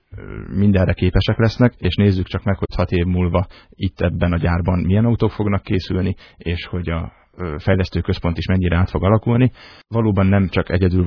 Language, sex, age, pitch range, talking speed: Hungarian, male, 30-49, 90-100 Hz, 175 wpm